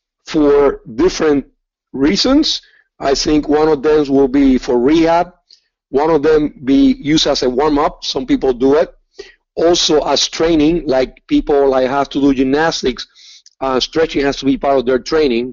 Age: 50-69